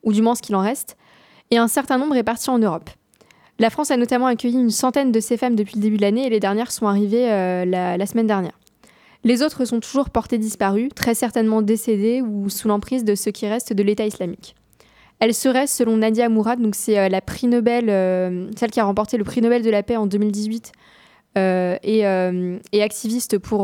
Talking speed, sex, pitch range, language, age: 225 wpm, female, 210-245 Hz, French, 20-39